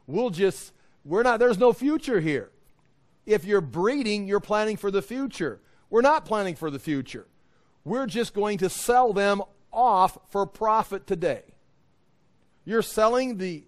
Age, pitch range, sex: 40-59, 195-275 Hz, male